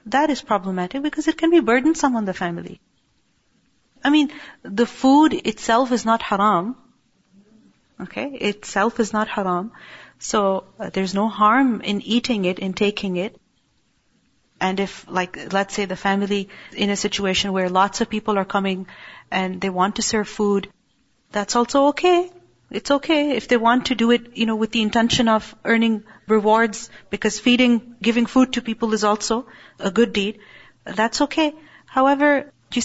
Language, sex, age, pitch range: English, female, 40-59, 205-245 Hz